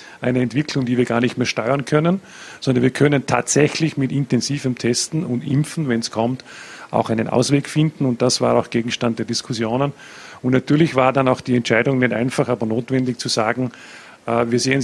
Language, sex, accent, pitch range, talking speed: German, male, Austrian, 125-140 Hz, 195 wpm